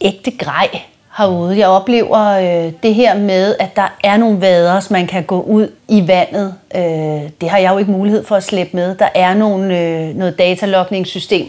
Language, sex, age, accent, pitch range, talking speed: Danish, female, 30-49, native, 175-215 Hz, 200 wpm